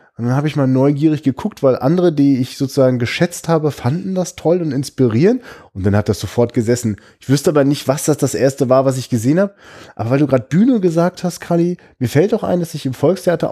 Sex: male